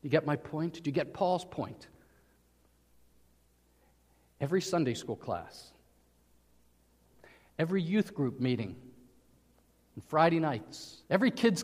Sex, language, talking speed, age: male, English, 115 wpm, 50-69